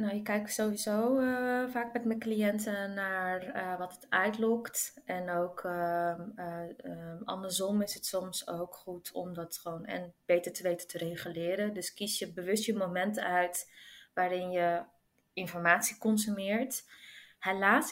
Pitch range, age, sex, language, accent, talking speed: 180-215 Hz, 20-39, female, Dutch, Dutch, 155 wpm